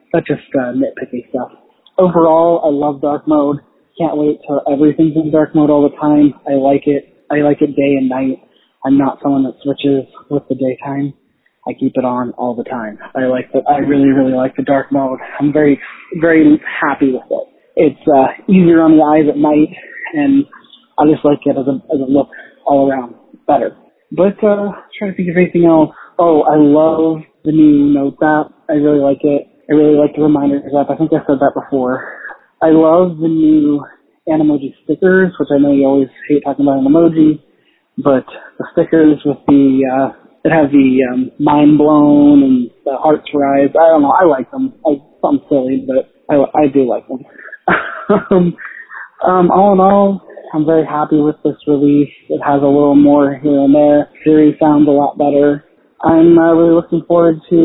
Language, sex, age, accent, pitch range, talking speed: English, male, 20-39, American, 140-160 Hz, 195 wpm